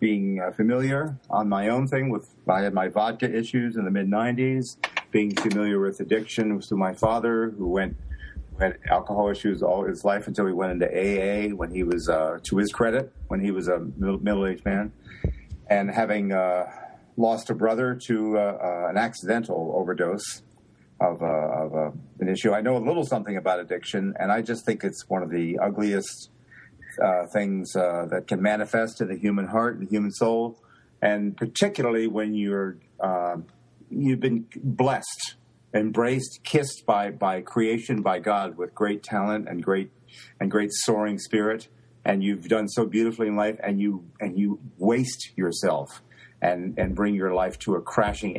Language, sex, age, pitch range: English, male, 40-59, 95-115 Hz